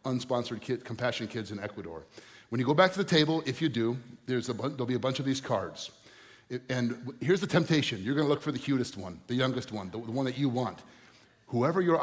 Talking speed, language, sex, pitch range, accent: 250 wpm, English, male, 115-150 Hz, American